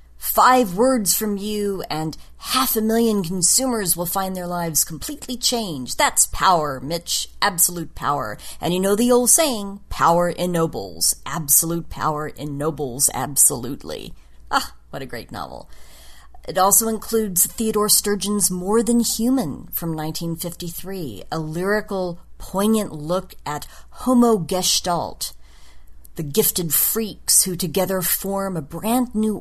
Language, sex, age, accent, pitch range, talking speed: English, female, 40-59, American, 145-200 Hz, 125 wpm